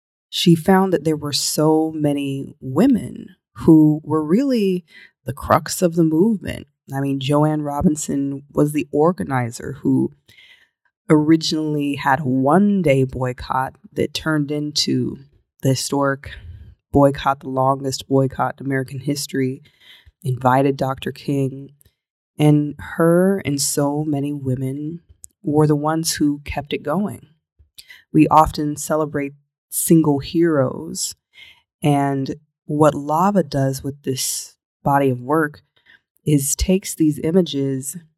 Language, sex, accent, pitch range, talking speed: English, female, American, 135-155 Hz, 120 wpm